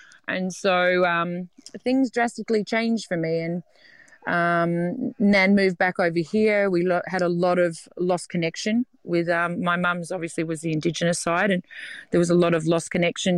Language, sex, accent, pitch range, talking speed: English, female, Australian, 170-205 Hz, 175 wpm